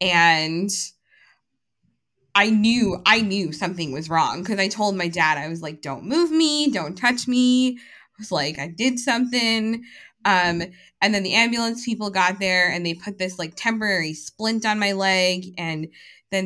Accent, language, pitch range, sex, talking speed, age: American, English, 175-225 Hz, female, 175 wpm, 20-39